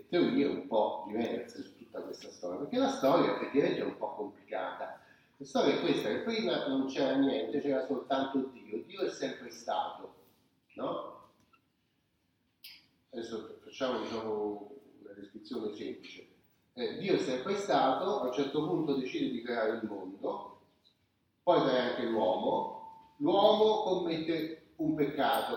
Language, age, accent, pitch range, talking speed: Italian, 30-49, native, 115-185 Hz, 145 wpm